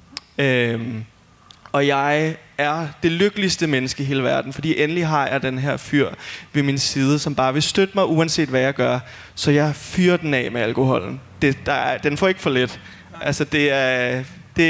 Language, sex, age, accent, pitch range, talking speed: Danish, male, 20-39, native, 130-165 Hz, 190 wpm